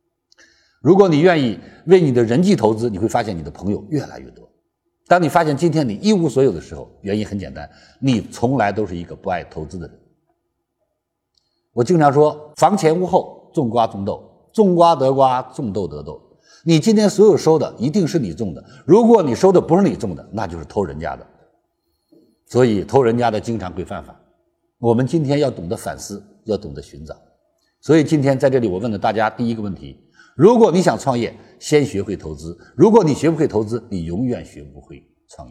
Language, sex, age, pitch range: Chinese, male, 50-69, 100-165 Hz